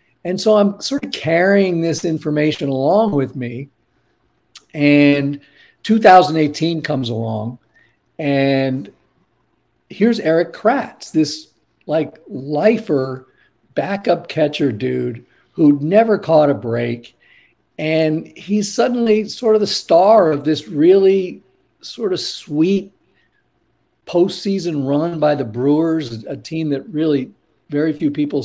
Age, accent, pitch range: 50-69, American, 140-195 Hz